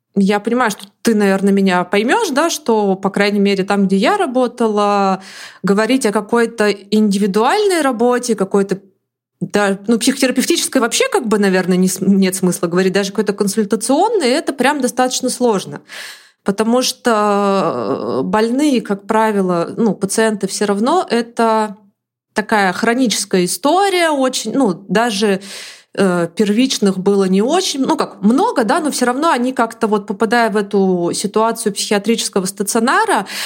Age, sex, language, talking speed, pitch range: 20-39, female, Russian, 135 wpm, 200-255 Hz